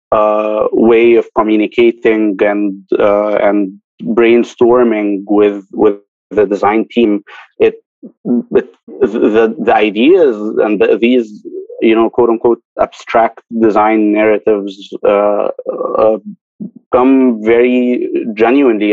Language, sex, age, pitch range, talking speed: English, male, 30-49, 105-120 Hz, 100 wpm